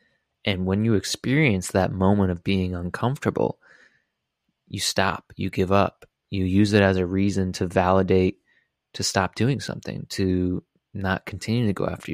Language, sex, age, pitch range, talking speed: English, male, 20-39, 95-105 Hz, 160 wpm